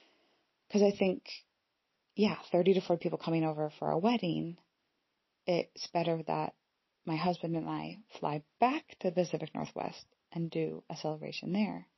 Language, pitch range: English, 165-200 Hz